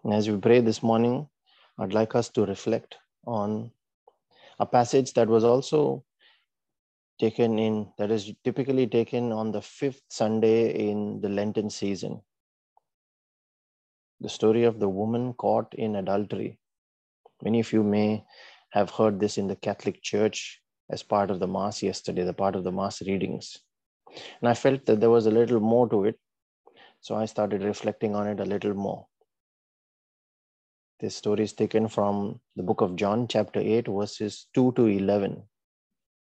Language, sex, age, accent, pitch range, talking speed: English, male, 30-49, Indian, 105-120 Hz, 160 wpm